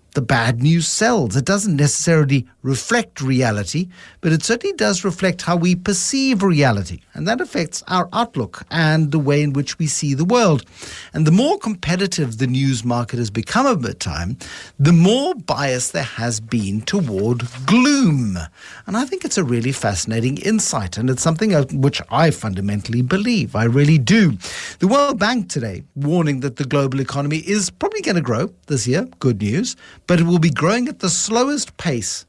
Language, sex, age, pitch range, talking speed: English, male, 50-69, 125-180 Hz, 175 wpm